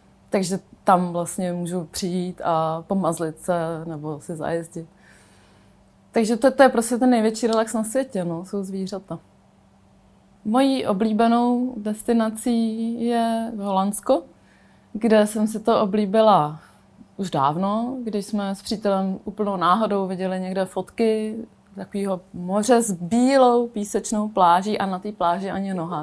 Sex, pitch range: female, 190-225 Hz